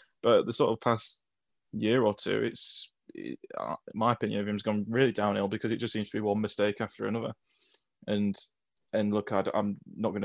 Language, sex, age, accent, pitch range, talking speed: English, male, 10-29, British, 100-110 Hz, 205 wpm